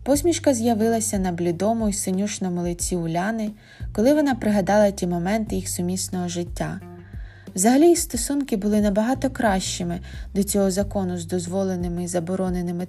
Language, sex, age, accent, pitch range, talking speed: Ukrainian, female, 20-39, native, 165-235 Hz, 130 wpm